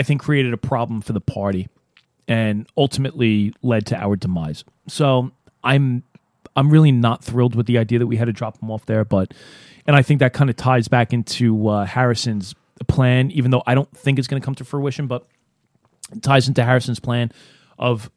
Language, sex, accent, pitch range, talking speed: English, male, American, 115-135 Hz, 205 wpm